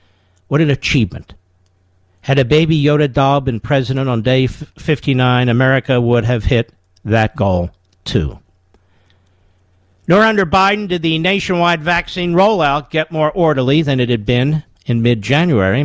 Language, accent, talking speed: English, American, 140 wpm